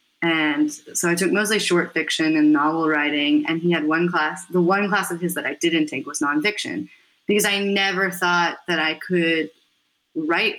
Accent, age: American, 20-39